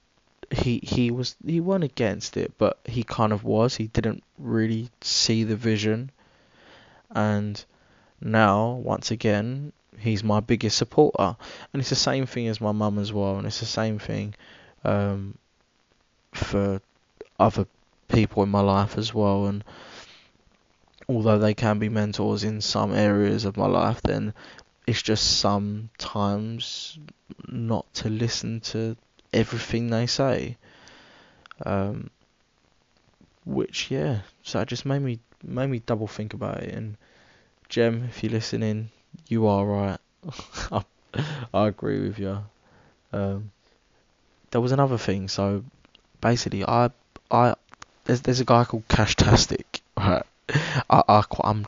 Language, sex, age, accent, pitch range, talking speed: English, male, 20-39, British, 100-120 Hz, 135 wpm